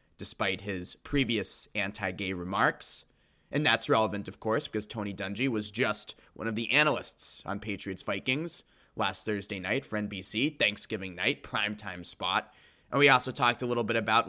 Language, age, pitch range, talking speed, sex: English, 20-39, 110-140 Hz, 160 wpm, male